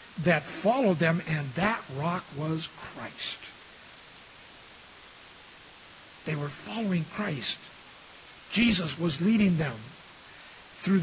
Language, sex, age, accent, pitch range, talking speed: English, male, 60-79, American, 155-215 Hz, 95 wpm